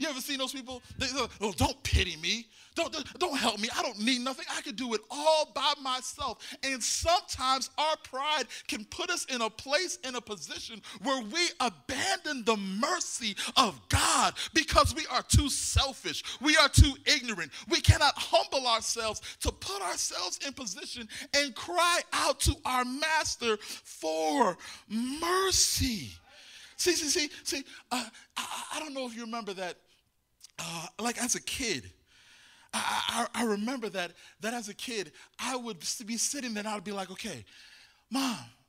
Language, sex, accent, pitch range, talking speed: English, male, American, 225-300 Hz, 170 wpm